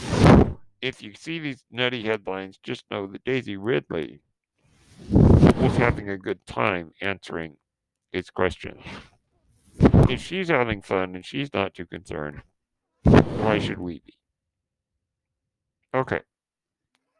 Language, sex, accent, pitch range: English, male, American, 100-130 Hz